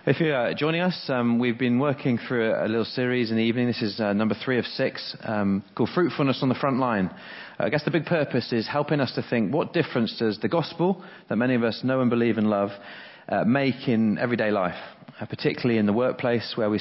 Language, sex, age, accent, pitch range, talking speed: English, male, 30-49, British, 110-135 Hz, 230 wpm